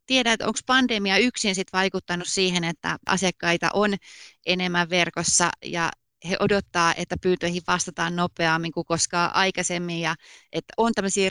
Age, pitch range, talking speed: 30-49, 170-195 Hz, 140 wpm